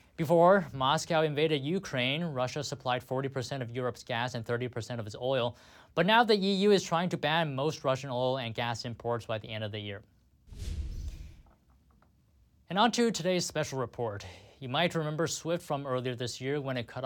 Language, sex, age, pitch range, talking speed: English, male, 20-39, 120-170 Hz, 185 wpm